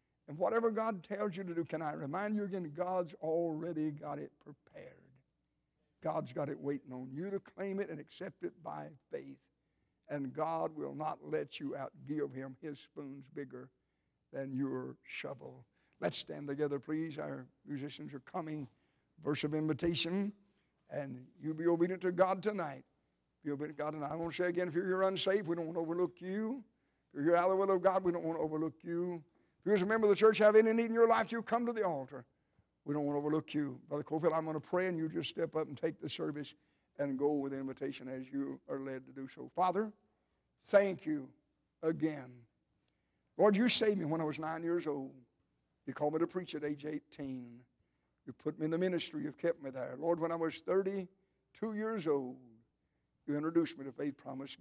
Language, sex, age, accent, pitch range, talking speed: English, male, 60-79, American, 140-185 Hz, 215 wpm